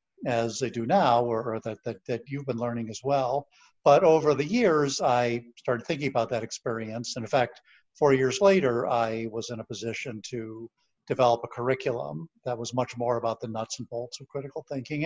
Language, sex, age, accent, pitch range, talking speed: English, male, 50-69, American, 115-135 Hz, 205 wpm